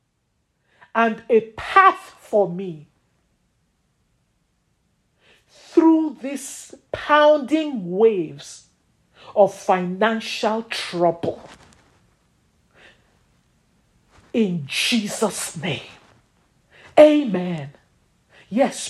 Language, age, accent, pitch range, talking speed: English, 50-69, Nigerian, 200-285 Hz, 55 wpm